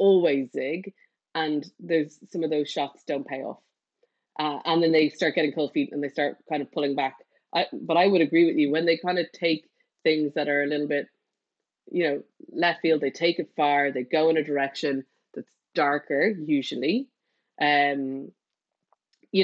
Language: English